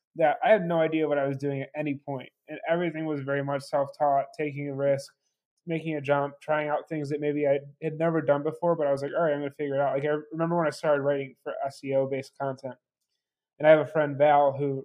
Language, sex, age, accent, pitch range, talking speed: English, male, 20-39, American, 140-155 Hz, 260 wpm